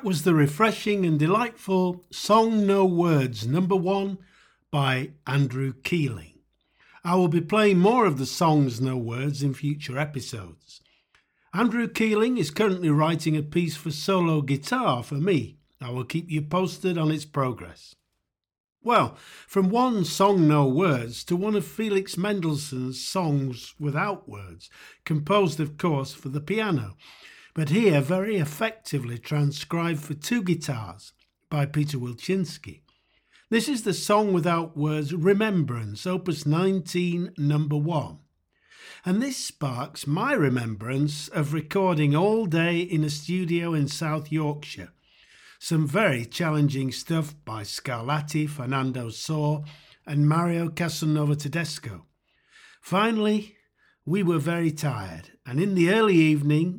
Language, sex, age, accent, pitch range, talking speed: English, male, 50-69, British, 145-185 Hz, 130 wpm